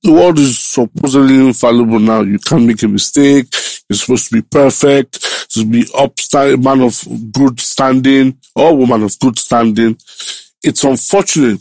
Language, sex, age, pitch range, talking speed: English, male, 50-69, 120-165 Hz, 165 wpm